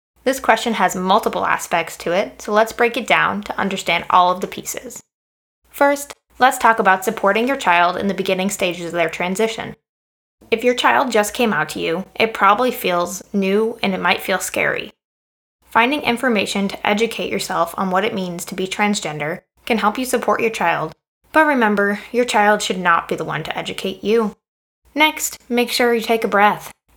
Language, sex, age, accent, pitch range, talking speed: English, female, 20-39, American, 190-230 Hz, 190 wpm